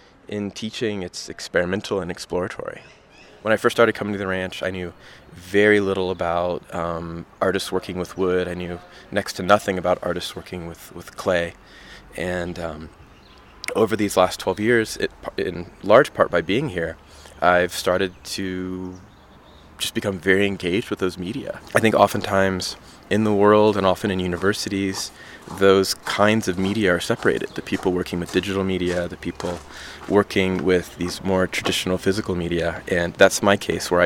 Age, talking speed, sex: 20-39, 165 wpm, male